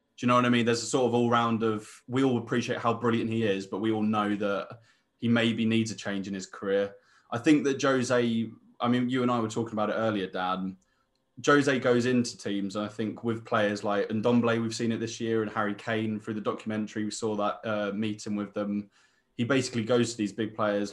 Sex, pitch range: male, 105-115 Hz